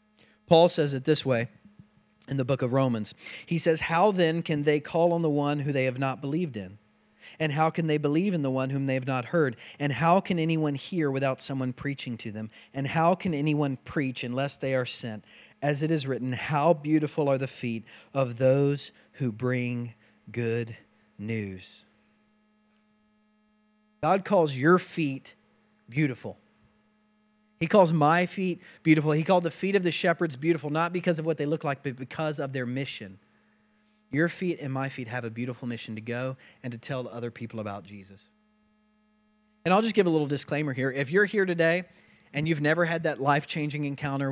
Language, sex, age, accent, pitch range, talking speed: English, male, 40-59, American, 130-170 Hz, 190 wpm